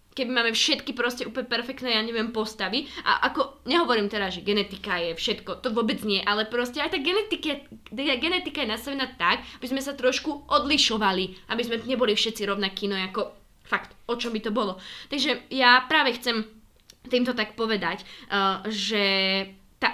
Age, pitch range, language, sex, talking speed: 20-39, 210-250 Hz, Slovak, female, 170 wpm